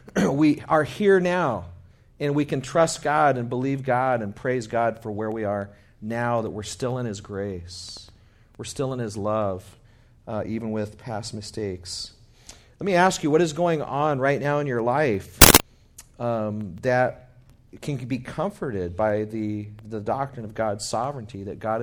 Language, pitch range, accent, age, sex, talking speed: English, 110-140 Hz, American, 40-59, male, 175 wpm